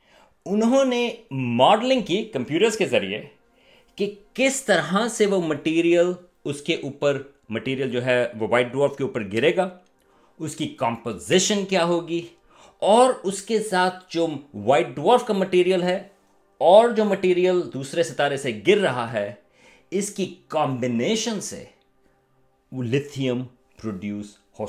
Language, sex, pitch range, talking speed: Urdu, male, 130-185 Hz, 140 wpm